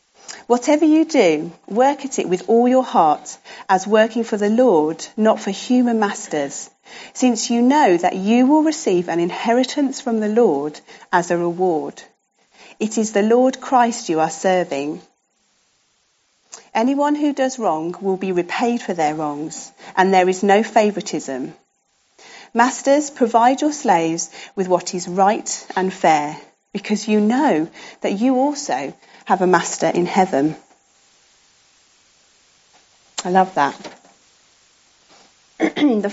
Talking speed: 135 wpm